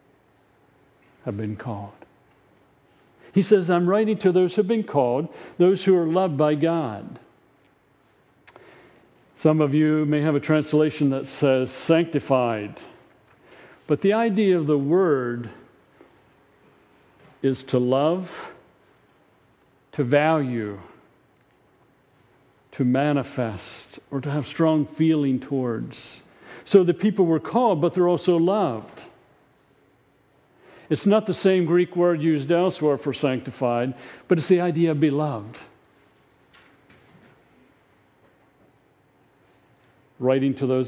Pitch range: 125-165 Hz